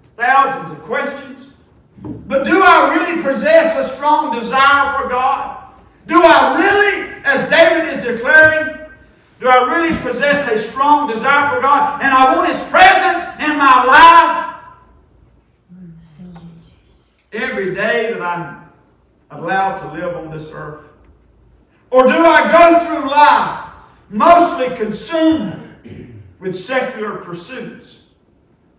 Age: 50-69